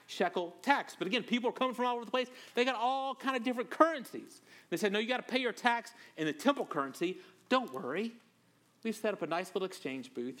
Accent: American